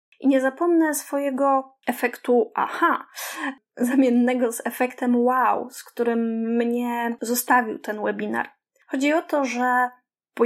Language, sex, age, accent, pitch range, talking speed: Polish, female, 20-39, native, 235-280 Hz, 120 wpm